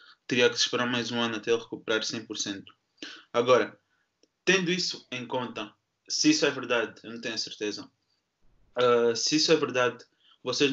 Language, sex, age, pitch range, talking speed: Portuguese, male, 20-39, 115-135 Hz, 170 wpm